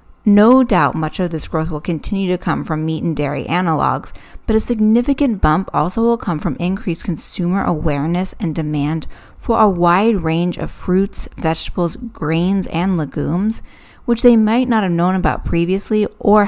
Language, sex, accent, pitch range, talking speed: English, female, American, 165-215 Hz, 170 wpm